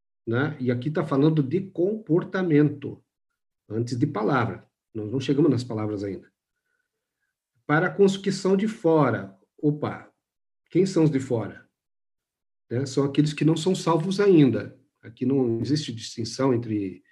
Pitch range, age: 120-155 Hz, 50-69